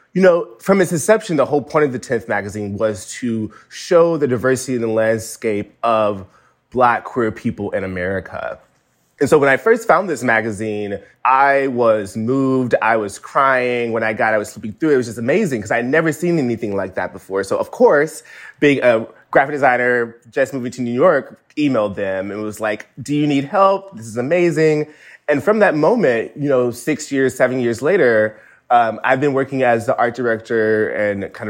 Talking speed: 200 wpm